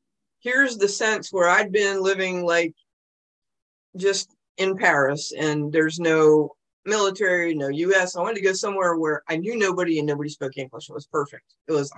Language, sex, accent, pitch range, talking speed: English, female, American, 160-220 Hz, 175 wpm